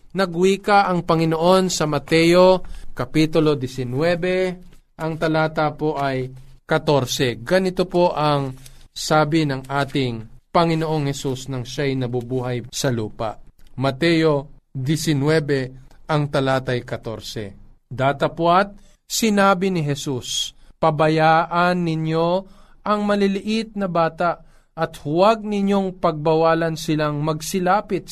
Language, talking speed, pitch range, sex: Filipino, 100 wpm, 130-165 Hz, male